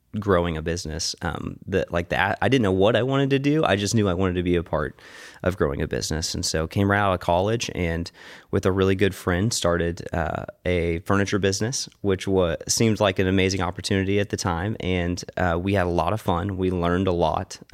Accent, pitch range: American, 90-100 Hz